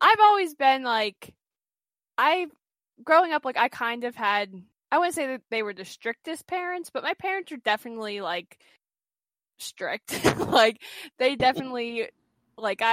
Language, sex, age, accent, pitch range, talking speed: English, female, 10-29, American, 190-245 Hz, 150 wpm